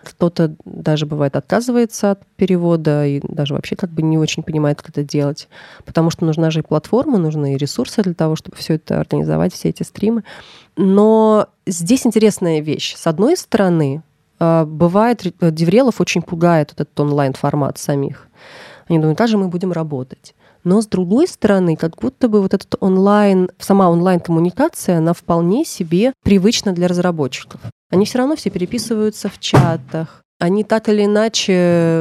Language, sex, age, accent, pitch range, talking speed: Russian, female, 30-49, native, 160-205 Hz, 155 wpm